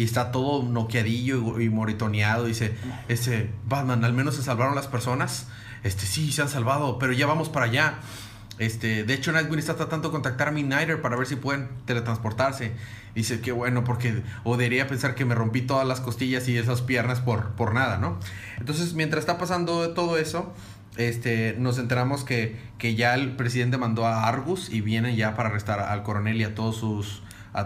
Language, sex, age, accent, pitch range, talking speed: Spanish, male, 30-49, Mexican, 110-140 Hz, 195 wpm